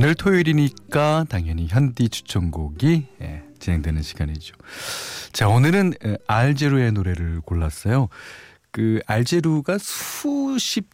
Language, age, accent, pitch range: Korean, 40-59, native, 85-140 Hz